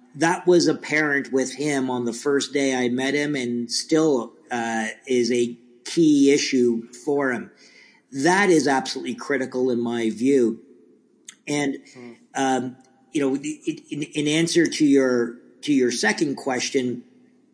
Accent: American